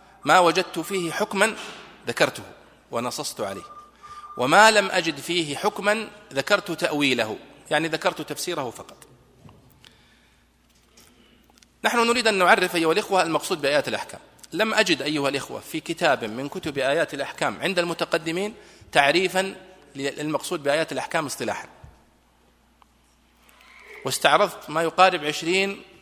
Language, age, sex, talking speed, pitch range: Arabic, 40-59, male, 110 wpm, 140-190 Hz